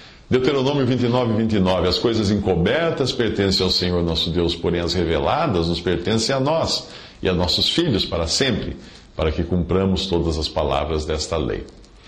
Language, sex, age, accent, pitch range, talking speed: Portuguese, male, 50-69, Brazilian, 90-125 Hz, 155 wpm